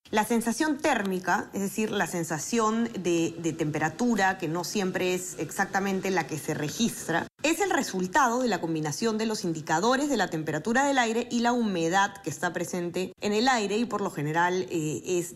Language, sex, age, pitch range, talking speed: Spanish, female, 20-39, 165-220 Hz, 190 wpm